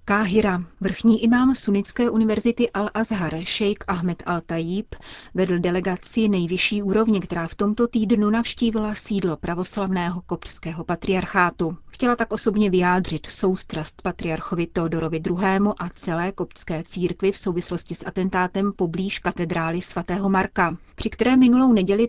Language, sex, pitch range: Czech, female, 175-215 Hz